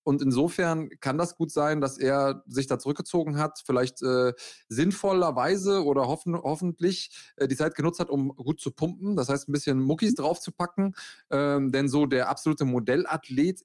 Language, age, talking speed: German, 30-49, 170 wpm